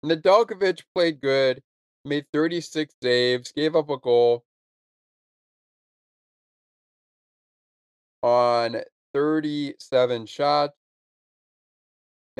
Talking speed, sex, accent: 65 wpm, male, American